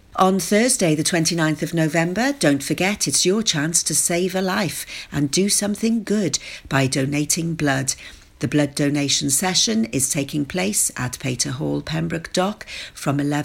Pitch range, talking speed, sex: 140-190 Hz, 155 wpm, female